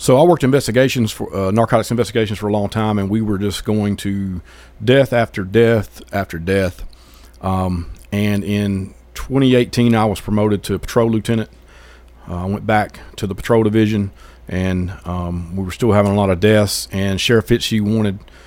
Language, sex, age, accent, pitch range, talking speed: English, male, 40-59, American, 85-110 Hz, 175 wpm